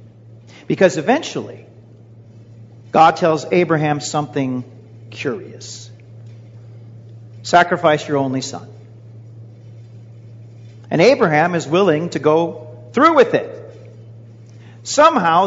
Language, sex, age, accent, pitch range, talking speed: English, male, 50-69, American, 115-180 Hz, 80 wpm